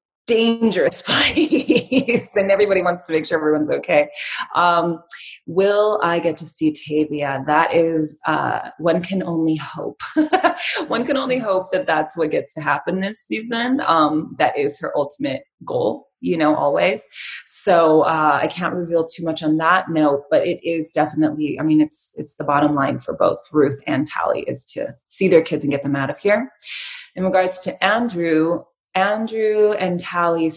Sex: female